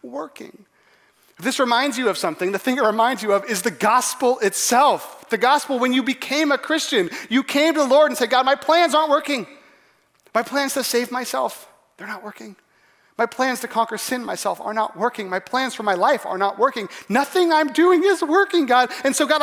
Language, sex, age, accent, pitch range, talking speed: English, male, 30-49, American, 205-295 Hz, 215 wpm